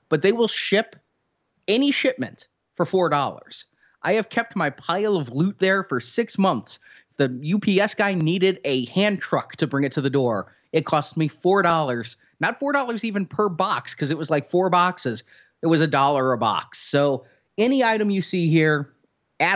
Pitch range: 140-190 Hz